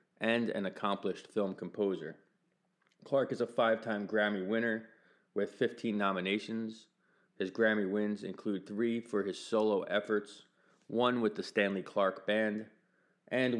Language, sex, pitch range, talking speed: English, male, 95-115 Hz, 130 wpm